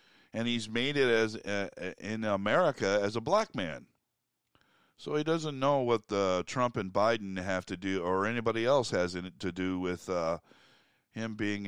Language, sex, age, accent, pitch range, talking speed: English, male, 50-69, American, 90-110 Hz, 175 wpm